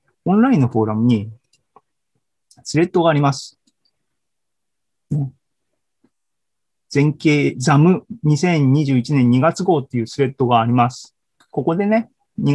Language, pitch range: Japanese, 120-160 Hz